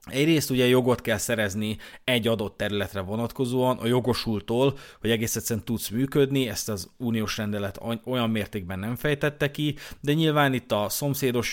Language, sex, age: Hungarian, male, 30-49